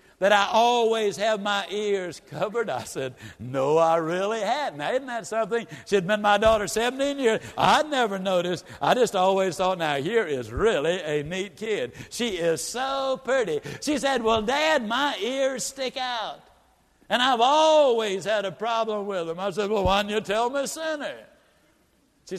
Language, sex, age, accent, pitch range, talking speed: English, male, 60-79, American, 185-255 Hz, 185 wpm